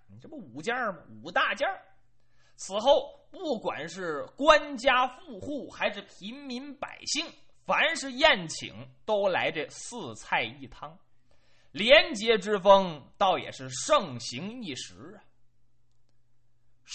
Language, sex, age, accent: Chinese, male, 30-49, native